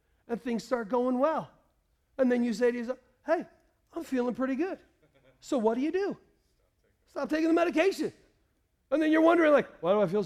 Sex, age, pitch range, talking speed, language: male, 40-59, 165-275 Hz, 200 wpm, English